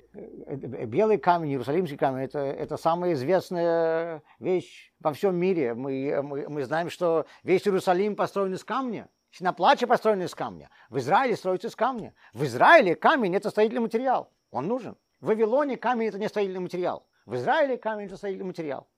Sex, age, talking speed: male, 50-69, 165 wpm